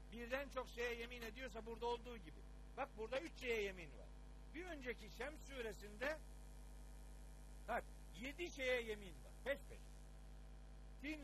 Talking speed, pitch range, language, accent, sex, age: 145 wpm, 195-260 Hz, Turkish, native, male, 60-79